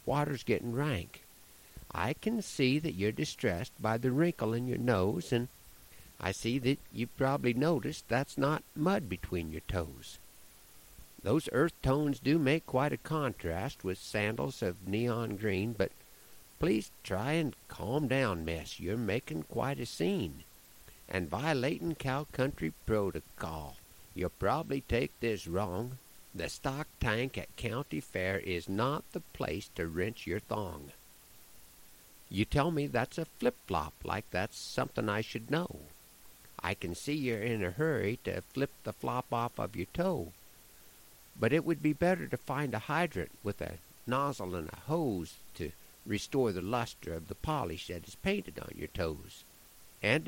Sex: male